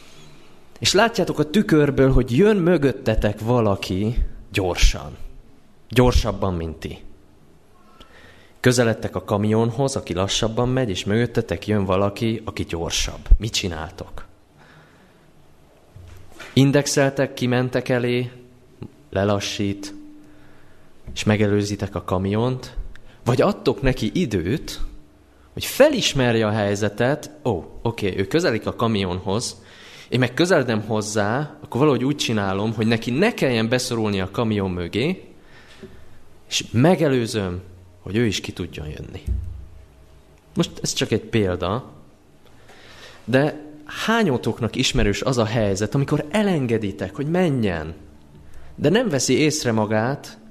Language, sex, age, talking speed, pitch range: Hungarian, male, 20-39, 110 wpm, 90-125 Hz